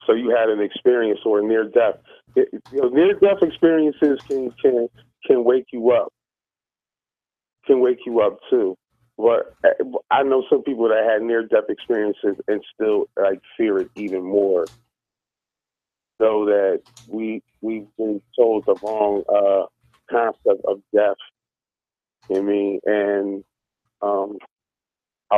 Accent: American